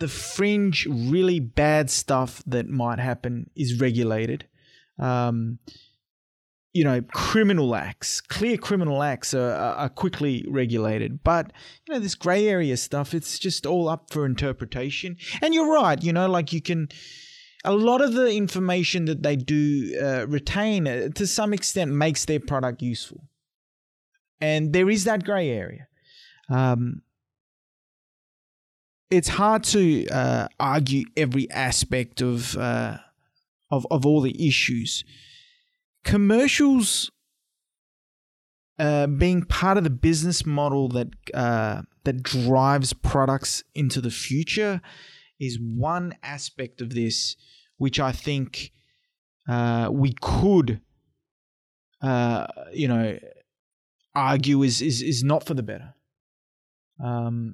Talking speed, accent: 125 wpm, Australian